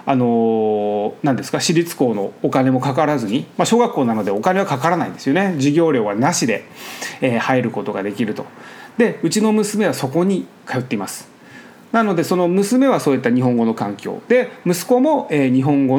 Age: 30-49